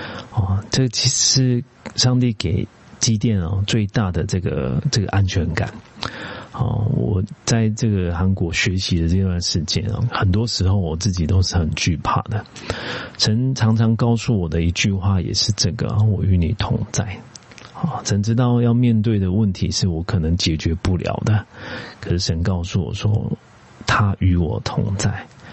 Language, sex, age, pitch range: Korean, male, 40-59, 95-115 Hz